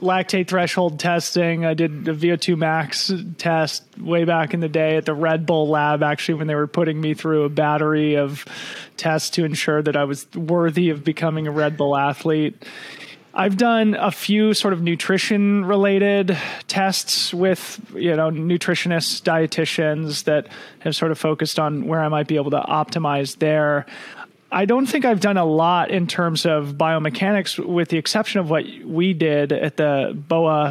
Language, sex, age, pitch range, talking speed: English, male, 30-49, 150-180 Hz, 180 wpm